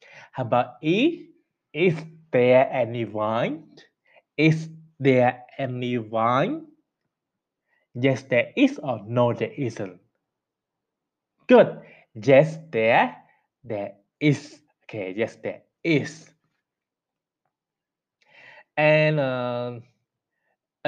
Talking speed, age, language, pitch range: 85 wpm, 20-39, English, 120-155 Hz